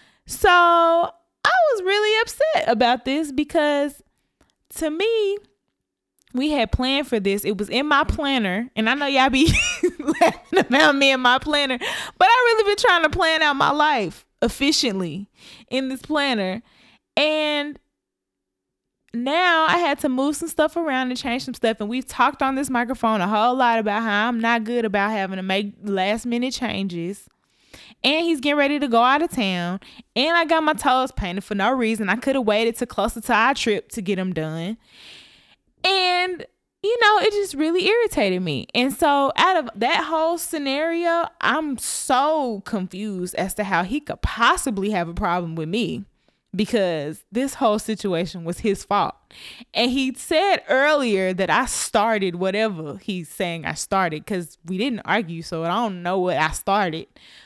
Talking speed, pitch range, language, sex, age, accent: 175 wpm, 205-300 Hz, English, female, 20-39, American